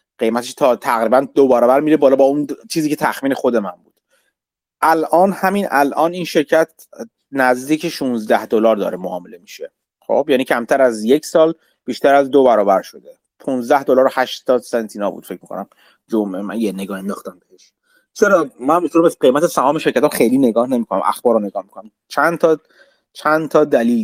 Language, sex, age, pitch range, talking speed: Persian, male, 30-49, 130-180 Hz, 175 wpm